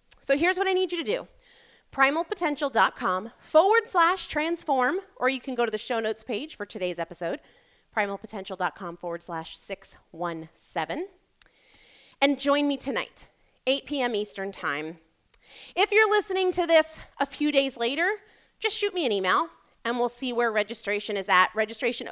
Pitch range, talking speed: 205-300 Hz, 155 wpm